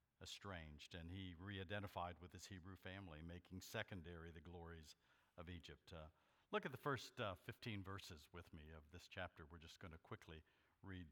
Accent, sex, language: American, male, English